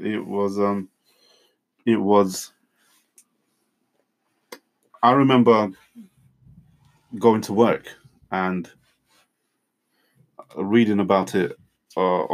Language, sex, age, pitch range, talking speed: English, male, 20-39, 95-115 Hz, 75 wpm